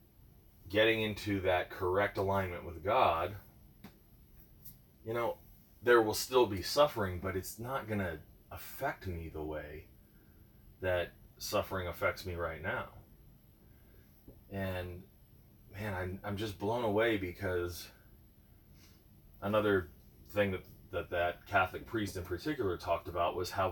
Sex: male